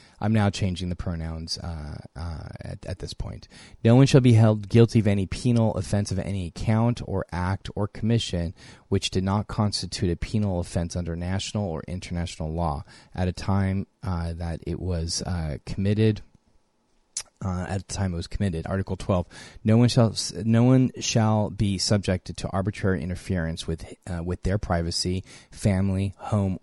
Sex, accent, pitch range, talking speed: male, American, 85-100 Hz, 170 wpm